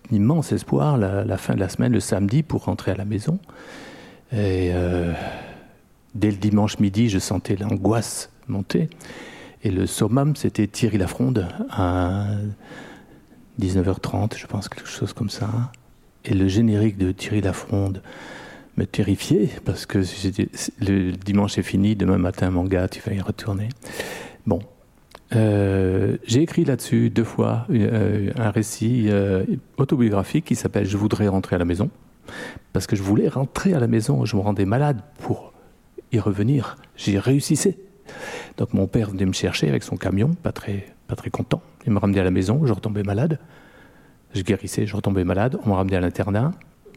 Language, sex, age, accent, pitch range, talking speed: French, male, 50-69, French, 100-120 Hz, 170 wpm